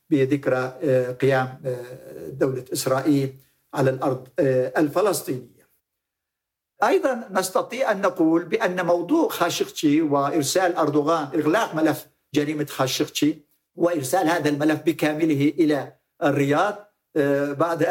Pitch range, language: 140-180 Hz, Arabic